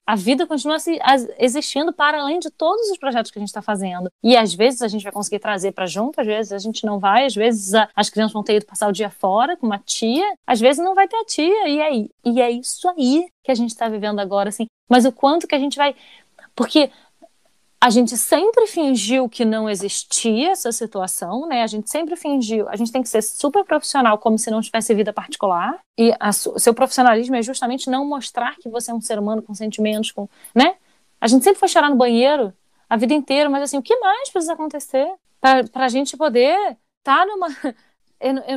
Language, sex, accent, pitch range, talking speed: Portuguese, female, Brazilian, 225-320 Hz, 220 wpm